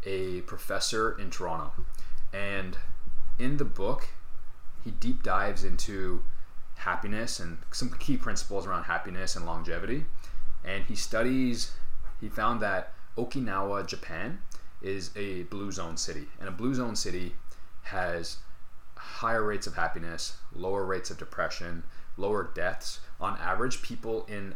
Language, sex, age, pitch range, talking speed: English, male, 20-39, 85-110 Hz, 130 wpm